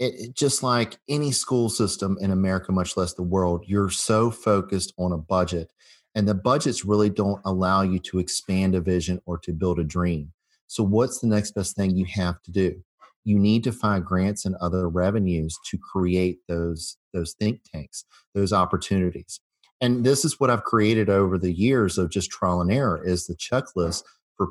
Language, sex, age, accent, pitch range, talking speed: English, male, 40-59, American, 85-105 Hz, 195 wpm